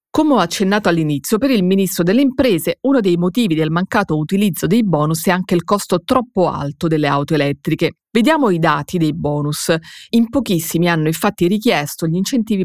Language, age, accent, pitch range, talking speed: Italian, 30-49, native, 165-210 Hz, 180 wpm